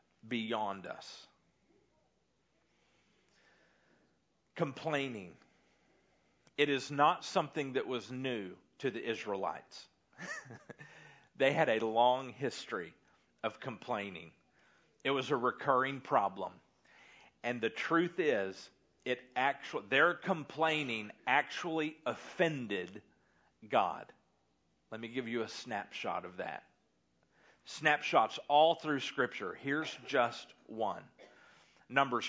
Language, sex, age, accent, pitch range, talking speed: English, male, 40-59, American, 120-160 Hz, 95 wpm